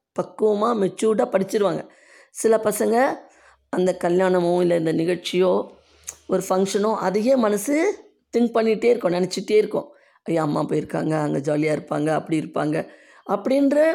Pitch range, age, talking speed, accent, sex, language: 155-210 Hz, 20-39, 120 wpm, native, female, Tamil